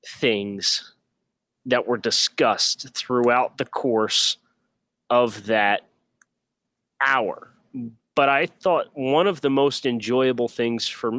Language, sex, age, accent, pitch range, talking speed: English, male, 30-49, American, 115-140 Hz, 105 wpm